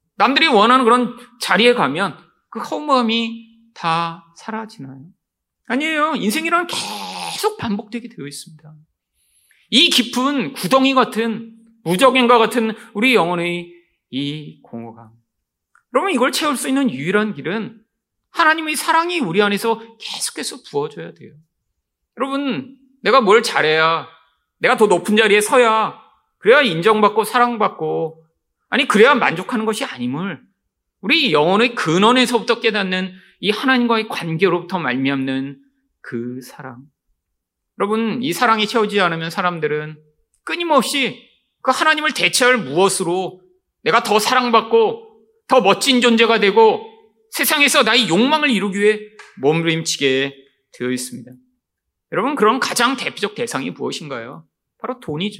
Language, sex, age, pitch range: Korean, male, 40-59, 165-250 Hz